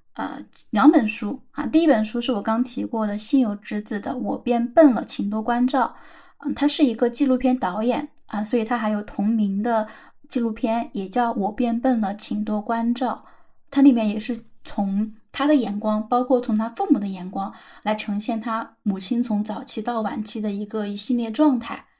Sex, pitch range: female, 215-255 Hz